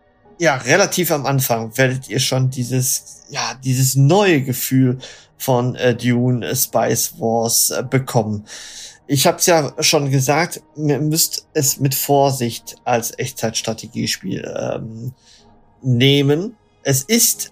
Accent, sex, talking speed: German, male, 120 wpm